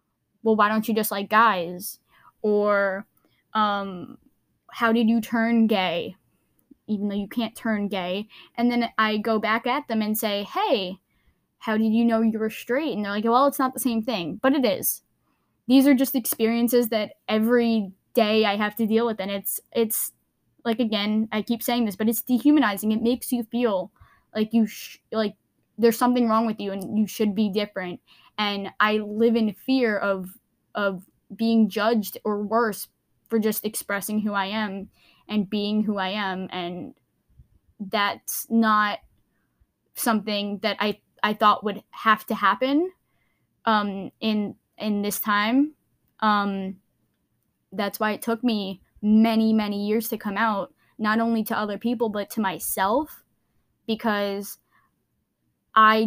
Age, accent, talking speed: 10-29, American, 160 wpm